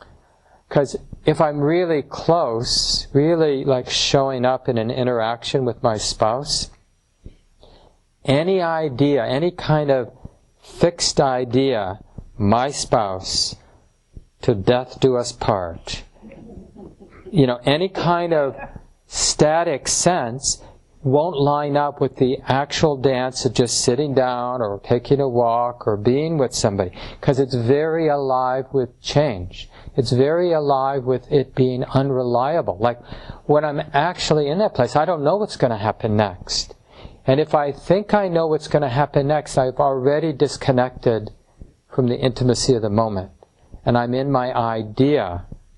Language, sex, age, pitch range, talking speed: English, male, 50-69, 120-145 Hz, 140 wpm